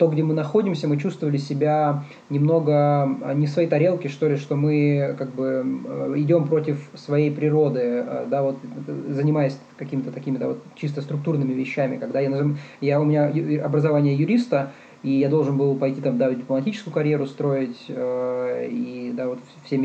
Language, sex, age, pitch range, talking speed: Russian, male, 20-39, 135-160 Hz, 160 wpm